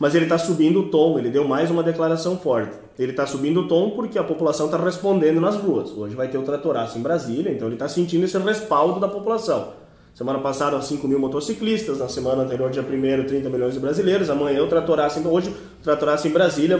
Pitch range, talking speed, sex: 150-205 Hz, 220 wpm, male